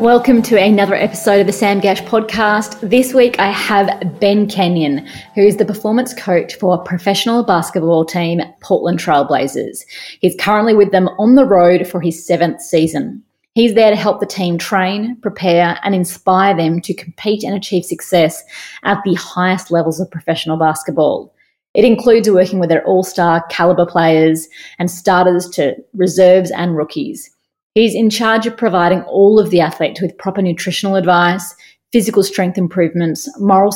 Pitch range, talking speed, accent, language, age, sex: 175-210 Hz, 165 wpm, Australian, English, 30-49, female